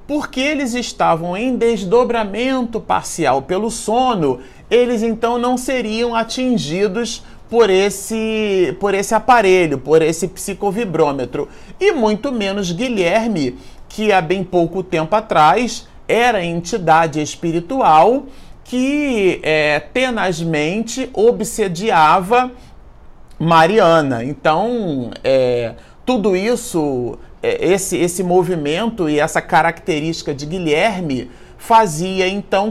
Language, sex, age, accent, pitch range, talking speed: Portuguese, male, 40-59, Brazilian, 165-240 Hz, 95 wpm